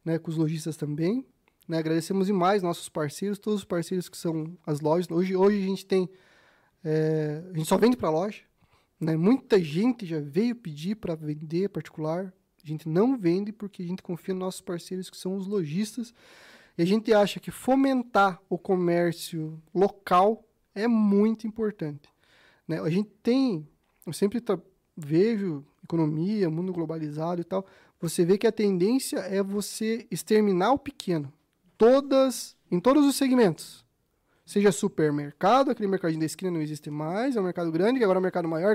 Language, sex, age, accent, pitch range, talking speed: Portuguese, male, 20-39, Brazilian, 165-215 Hz, 175 wpm